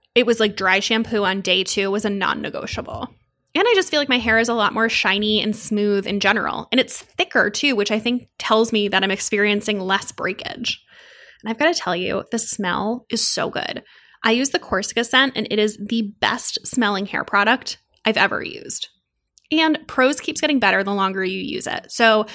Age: 10-29